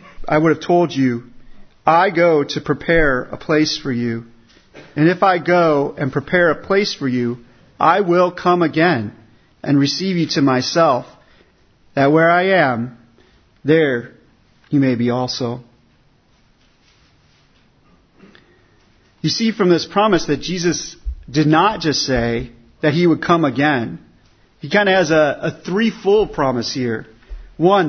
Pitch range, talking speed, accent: 125-180 Hz, 145 wpm, American